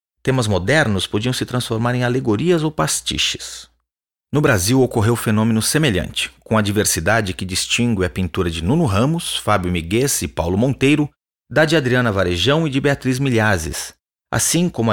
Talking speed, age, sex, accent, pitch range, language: 155 wpm, 40-59, male, Brazilian, 100-140 Hz, Portuguese